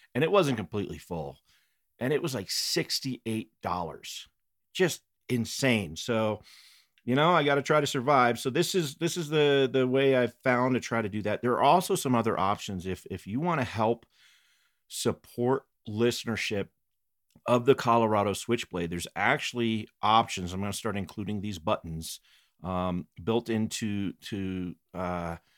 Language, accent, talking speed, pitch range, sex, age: English, American, 165 wpm, 95-125 Hz, male, 40-59